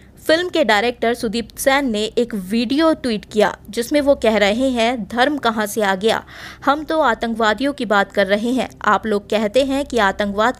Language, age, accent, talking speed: Hindi, 20-39, native, 190 wpm